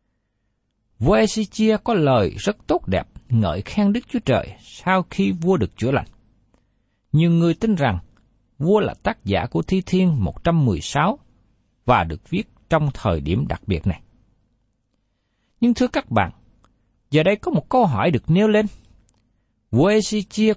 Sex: male